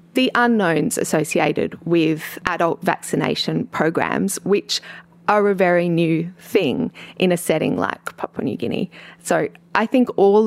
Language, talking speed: English, 140 wpm